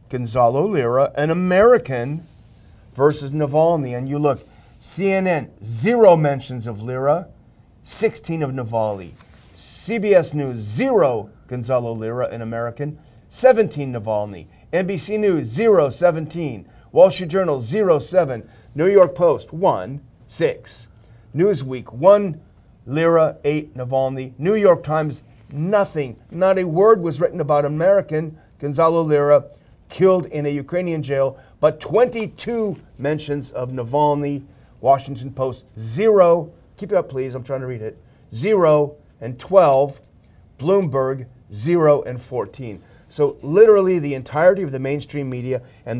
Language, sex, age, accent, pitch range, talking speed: English, male, 40-59, American, 125-175 Hz, 125 wpm